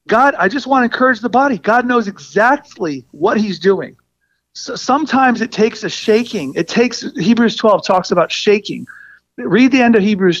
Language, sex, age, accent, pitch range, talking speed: English, male, 40-59, American, 200-255 Hz, 185 wpm